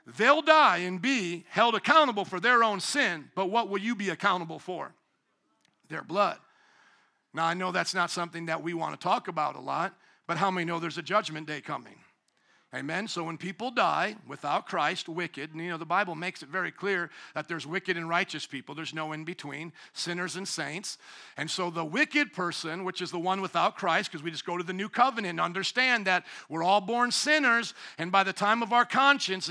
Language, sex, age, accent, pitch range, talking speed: English, male, 50-69, American, 185-245 Hz, 215 wpm